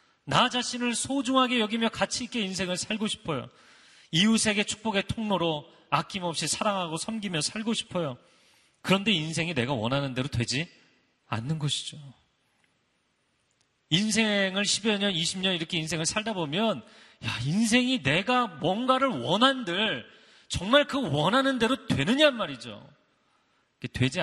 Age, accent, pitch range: 30-49, native, 150-225 Hz